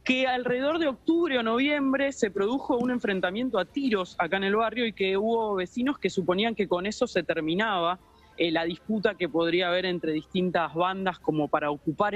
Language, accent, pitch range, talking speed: Spanish, Argentinian, 180-230 Hz, 190 wpm